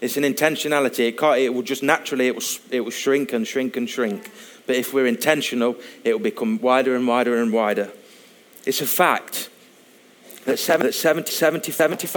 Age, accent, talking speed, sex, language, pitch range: 30-49, British, 190 wpm, male, English, 120-150 Hz